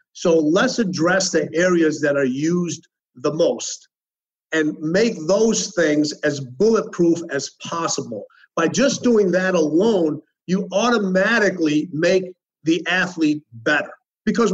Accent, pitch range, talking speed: American, 160-195 Hz, 125 wpm